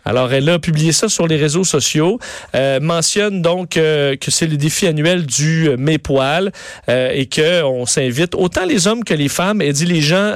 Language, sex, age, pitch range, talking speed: French, male, 40-59, 145-185 Hz, 215 wpm